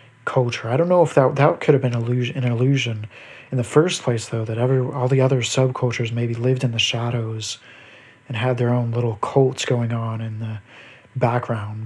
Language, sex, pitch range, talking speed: English, male, 115-130 Hz, 200 wpm